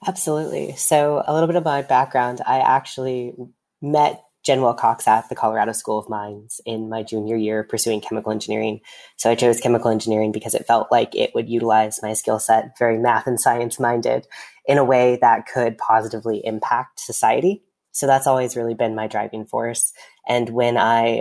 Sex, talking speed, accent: female, 185 wpm, American